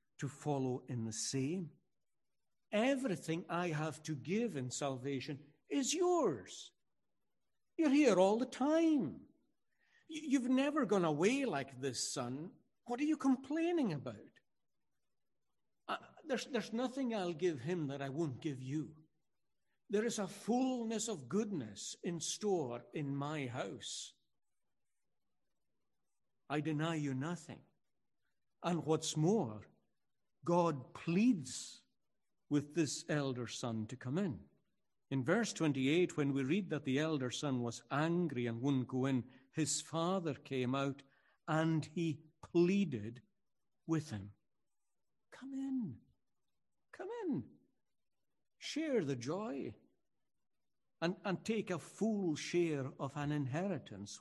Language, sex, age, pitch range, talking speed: English, male, 60-79, 135-200 Hz, 125 wpm